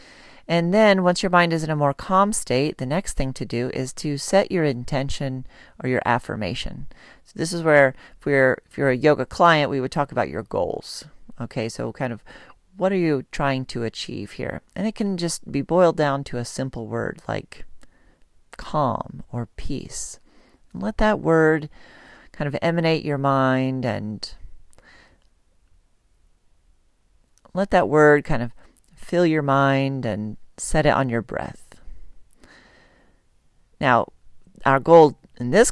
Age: 40-59